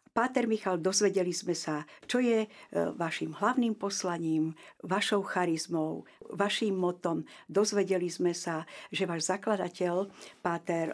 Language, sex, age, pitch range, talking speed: Slovak, female, 50-69, 165-205 Hz, 115 wpm